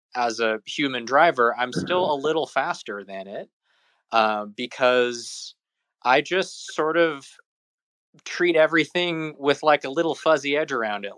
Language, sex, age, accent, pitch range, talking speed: English, male, 20-39, American, 115-155 Hz, 145 wpm